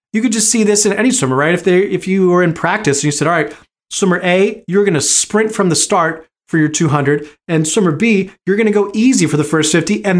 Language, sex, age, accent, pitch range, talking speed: English, male, 30-49, American, 145-185 Hz, 270 wpm